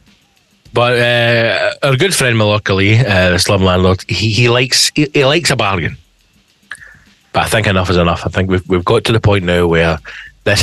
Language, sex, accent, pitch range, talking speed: English, male, British, 100-140 Hz, 200 wpm